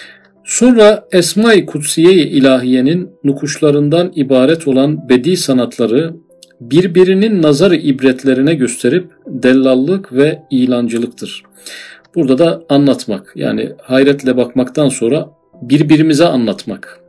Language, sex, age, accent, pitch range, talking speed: Turkish, male, 50-69, native, 125-155 Hz, 90 wpm